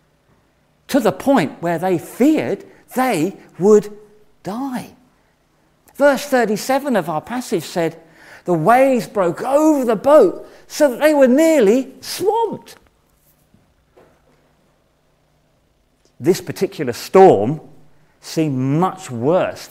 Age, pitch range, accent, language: 40-59, 170-270 Hz, British, English